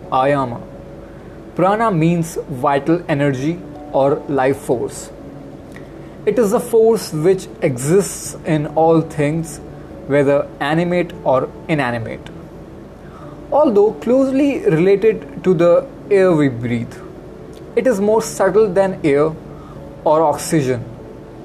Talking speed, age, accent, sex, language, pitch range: 105 wpm, 20-39, native, male, Hindi, 145-185 Hz